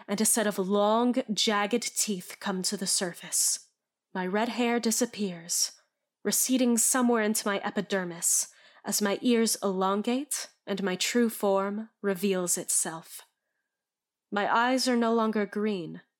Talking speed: 135 wpm